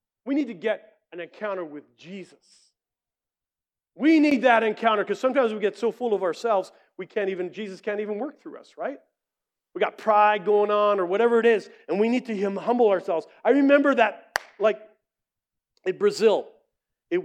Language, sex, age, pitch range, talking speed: English, male, 40-59, 160-215 Hz, 180 wpm